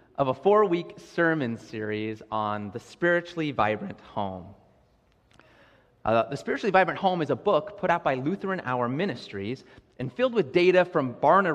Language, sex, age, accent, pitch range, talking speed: English, male, 30-49, American, 110-175 Hz, 155 wpm